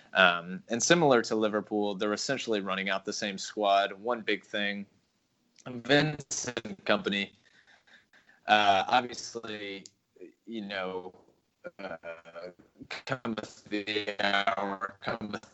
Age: 20-39